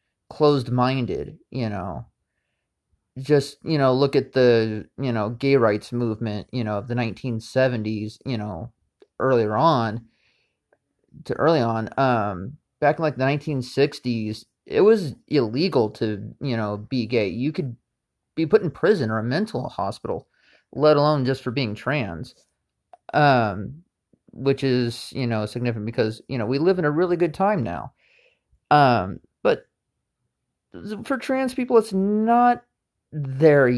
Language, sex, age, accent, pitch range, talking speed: English, male, 30-49, American, 115-150 Hz, 145 wpm